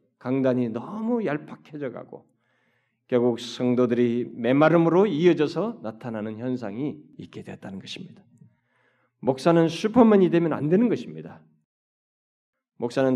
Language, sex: Korean, male